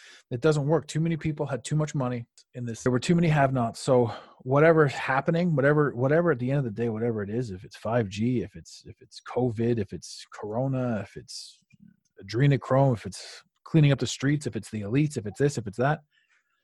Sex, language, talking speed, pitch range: male, English, 225 wpm, 115-145 Hz